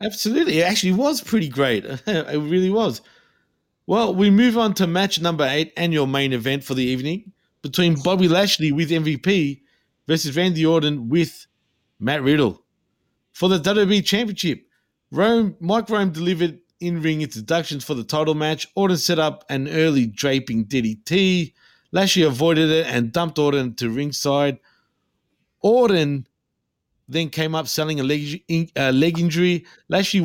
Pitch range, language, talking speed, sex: 140-180 Hz, English, 150 wpm, male